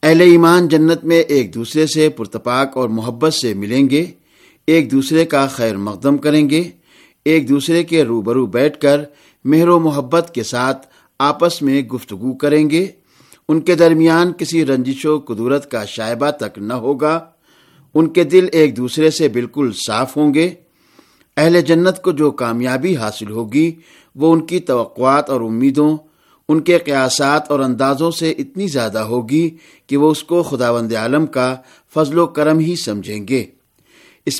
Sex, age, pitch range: male, 50-69, 130-165 Hz